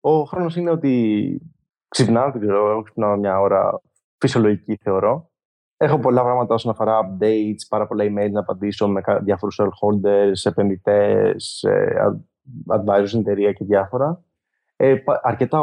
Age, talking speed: 20-39, 120 wpm